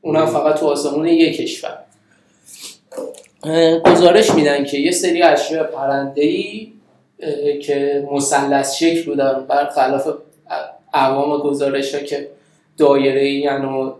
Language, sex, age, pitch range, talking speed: Persian, male, 20-39, 145-175 Hz, 110 wpm